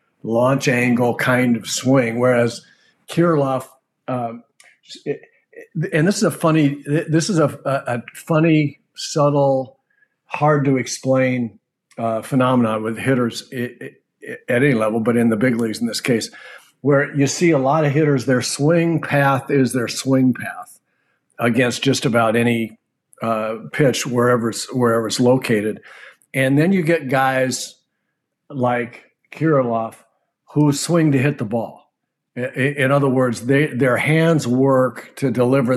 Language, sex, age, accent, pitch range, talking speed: English, male, 50-69, American, 120-140 Hz, 140 wpm